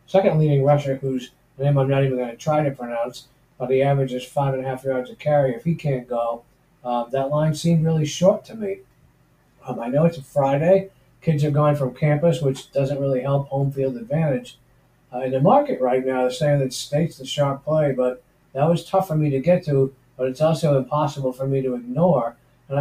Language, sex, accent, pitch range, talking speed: English, male, American, 125-155 Hz, 220 wpm